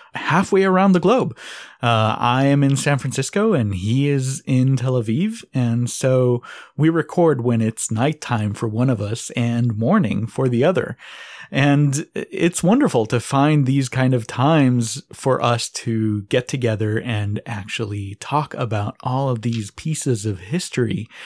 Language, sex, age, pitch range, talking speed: English, male, 30-49, 115-150 Hz, 160 wpm